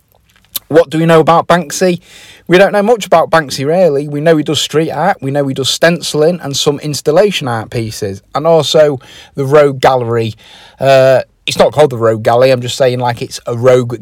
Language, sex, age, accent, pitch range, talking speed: English, male, 30-49, British, 120-155 Hz, 205 wpm